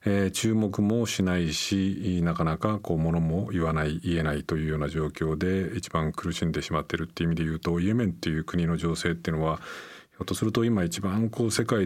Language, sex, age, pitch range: Japanese, male, 40-59, 85-105 Hz